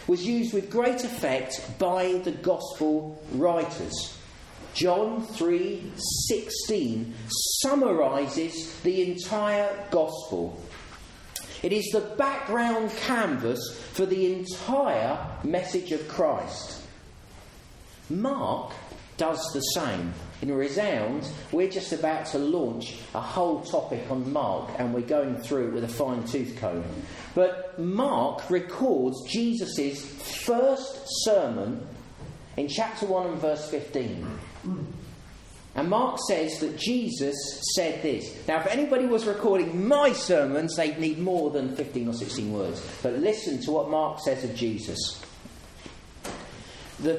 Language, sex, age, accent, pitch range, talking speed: English, male, 40-59, British, 130-215 Hz, 120 wpm